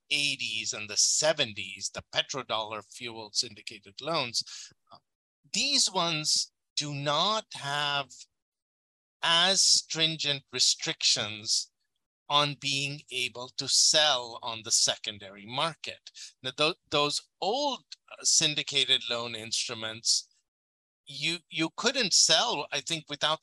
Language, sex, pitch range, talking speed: English, male, 125-170 Hz, 100 wpm